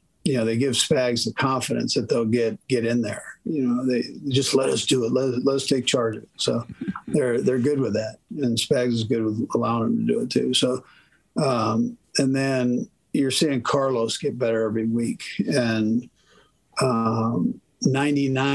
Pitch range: 115-135 Hz